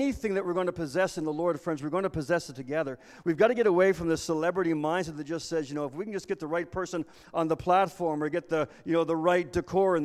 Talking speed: 300 wpm